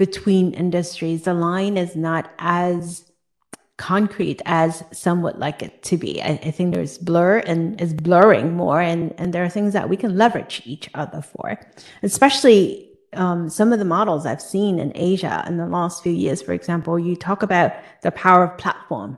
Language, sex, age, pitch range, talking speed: English, female, 30-49, 170-200 Hz, 190 wpm